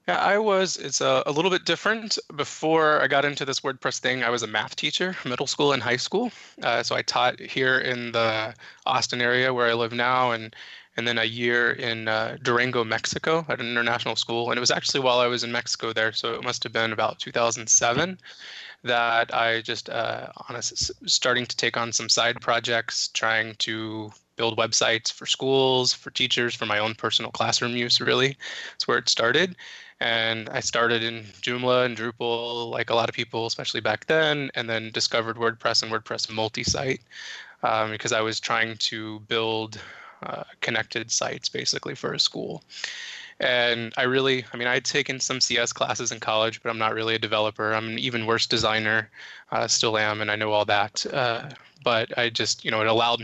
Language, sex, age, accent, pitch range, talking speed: English, male, 20-39, American, 110-125 Hz, 200 wpm